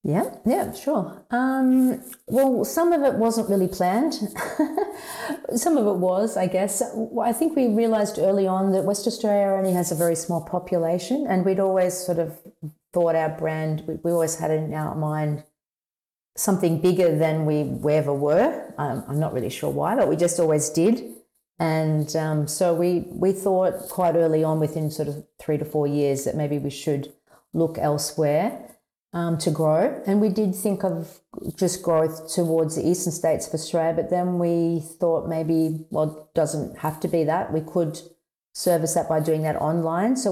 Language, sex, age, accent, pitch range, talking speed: English, female, 40-59, Australian, 155-190 Hz, 180 wpm